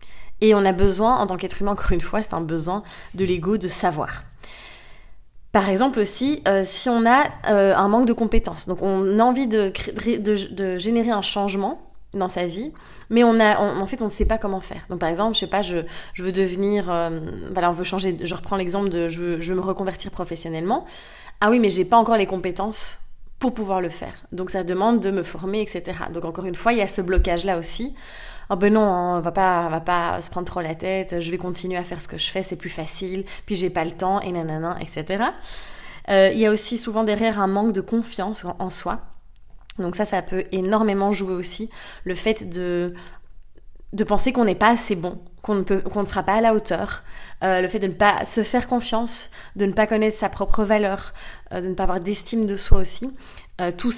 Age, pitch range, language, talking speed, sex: 20-39, 180-215 Hz, French, 235 wpm, female